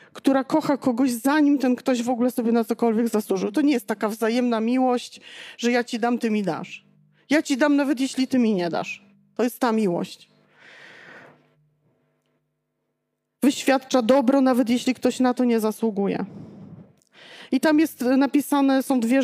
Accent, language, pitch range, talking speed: native, Polish, 215-270 Hz, 165 wpm